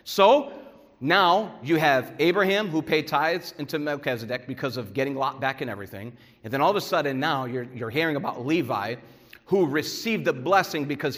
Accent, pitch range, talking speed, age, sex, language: American, 130-180 Hz, 185 wpm, 40-59, male, English